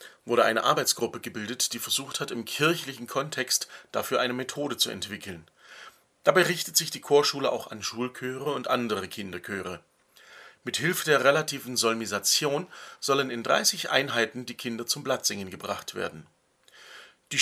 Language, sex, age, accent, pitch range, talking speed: German, male, 40-59, German, 115-150 Hz, 145 wpm